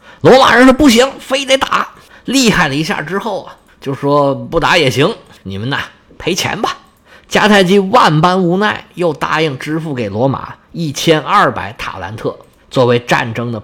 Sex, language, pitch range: male, Chinese, 125-200 Hz